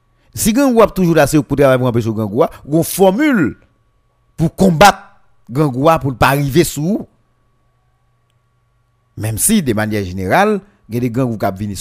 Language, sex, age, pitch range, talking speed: French, male, 50-69, 120-170 Hz, 130 wpm